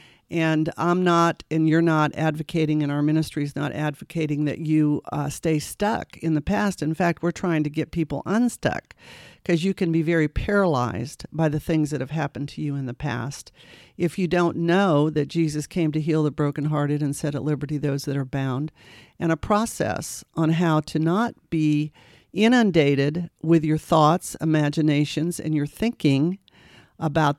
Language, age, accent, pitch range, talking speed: English, 50-69, American, 150-180 Hz, 180 wpm